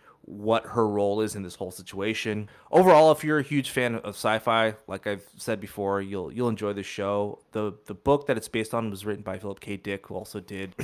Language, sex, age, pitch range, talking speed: English, male, 20-39, 100-120 Hz, 225 wpm